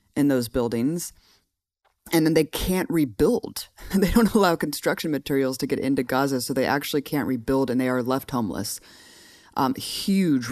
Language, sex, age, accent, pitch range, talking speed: English, female, 20-39, American, 125-145 Hz, 165 wpm